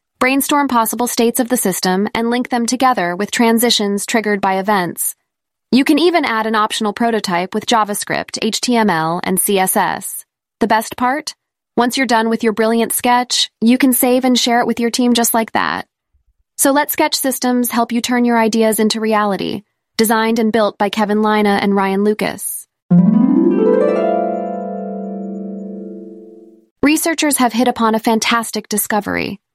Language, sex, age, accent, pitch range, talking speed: English, female, 20-39, American, 205-245 Hz, 155 wpm